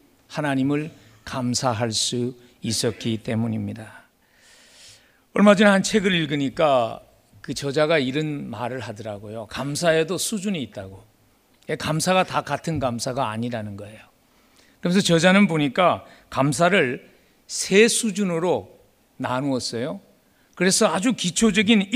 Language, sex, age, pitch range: Korean, male, 40-59, 120-200 Hz